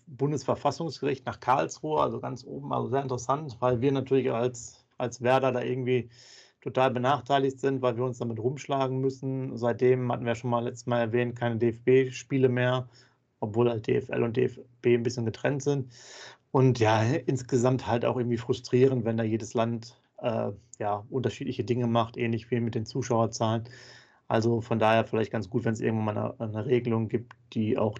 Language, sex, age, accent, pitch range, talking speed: German, male, 30-49, German, 115-125 Hz, 180 wpm